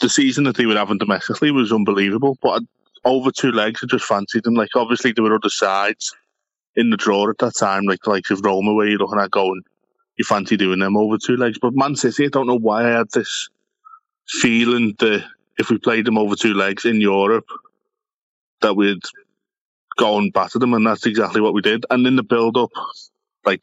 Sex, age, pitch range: male, 20-39, 100-140 Hz